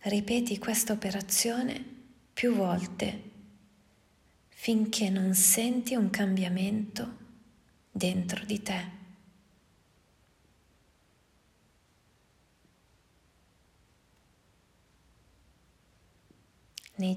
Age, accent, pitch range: 30-49, native, 185-220 Hz